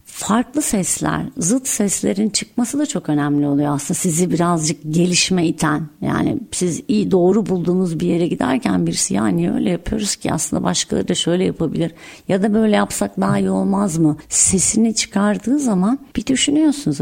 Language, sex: Turkish, female